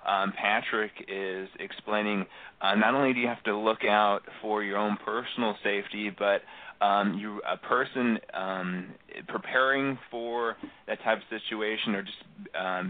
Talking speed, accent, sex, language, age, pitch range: 155 wpm, American, male, English, 30-49, 100-110 Hz